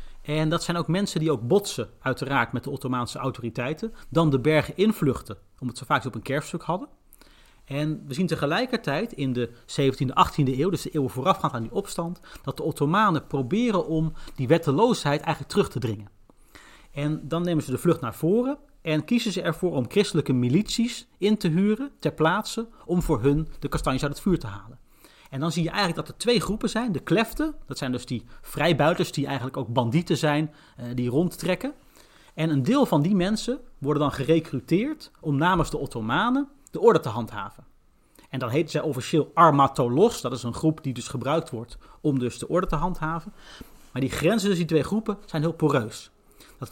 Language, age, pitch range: Dutch, 30-49, 135-180 Hz